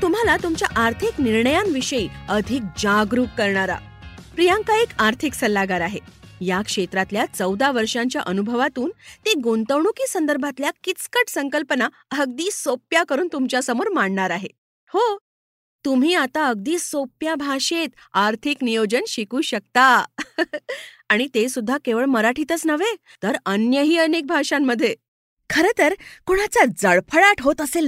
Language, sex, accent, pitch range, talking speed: Marathi, female, native, 230-325 Hz, 65 wpm